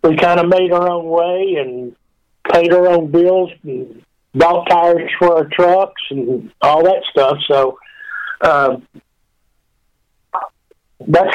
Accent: American